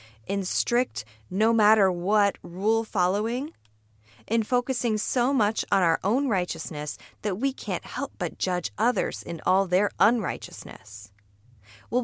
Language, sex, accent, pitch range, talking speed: English, female, American, 165-230 Hz, 120 wpm